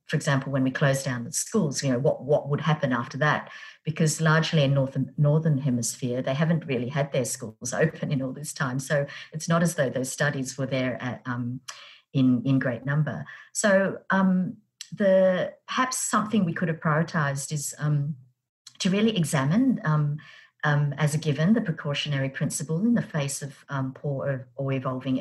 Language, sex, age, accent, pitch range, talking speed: English, female, 50-69, Australian, 130-160 Hz, 190 wpm